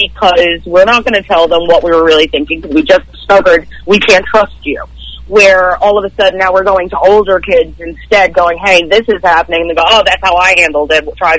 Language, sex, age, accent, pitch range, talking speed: English, female, 30-49, American, 165-215 Hz, 240 wpm